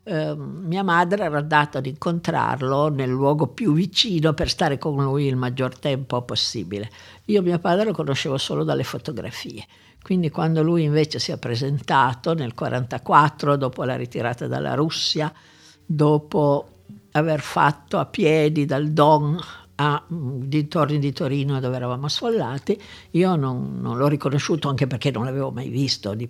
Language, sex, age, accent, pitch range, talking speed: Italian, female, 60-79, native, 125-155 Hz, 150 wpm